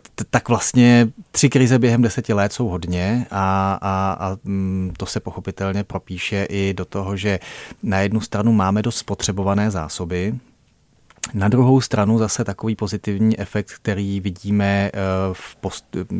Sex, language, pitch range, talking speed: male, Czech, 95-110 Hz, 140 wpm